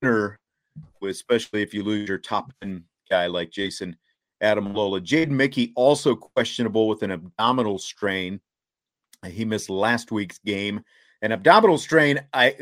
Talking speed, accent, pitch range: 140 wpm, American, 105-135 Hz